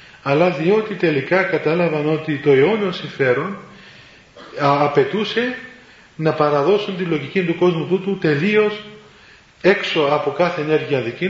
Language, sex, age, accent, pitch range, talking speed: Greek, male, 40-59, native, 150-195 Hz, 120 wpm